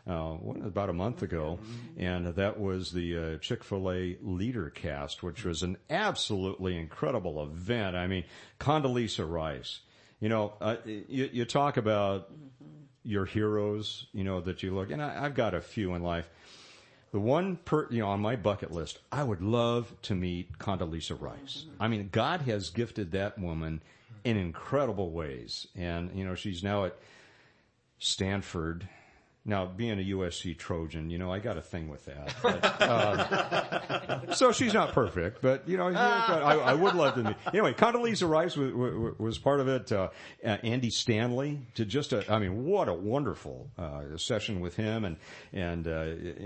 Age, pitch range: 50-69, 90-115 Hz